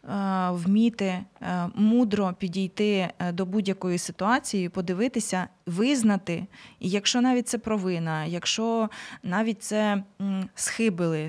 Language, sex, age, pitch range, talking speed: Ukrainian, female, 20-39, 180-215 Hz, 85 wpm